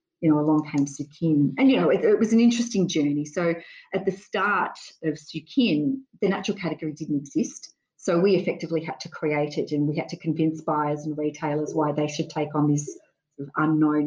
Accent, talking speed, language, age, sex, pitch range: Australian, 200 wpm, English, 40-59, female, 150-175 Hz